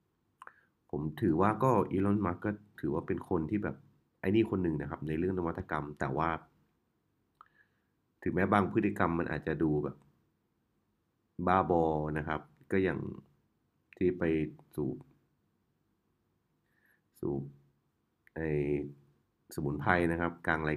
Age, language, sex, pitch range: 30-49, Thai, male, 75-100 Hz